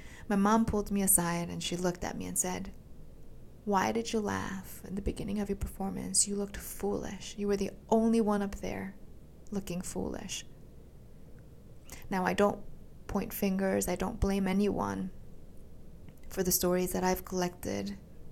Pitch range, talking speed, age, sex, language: 170-200 Hz, 160 wpm, 20-39, female, English